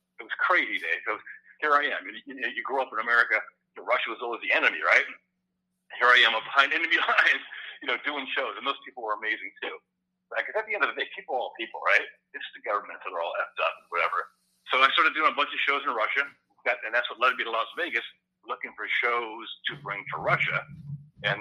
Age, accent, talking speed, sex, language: 60-79, American, 240 wpm, male, English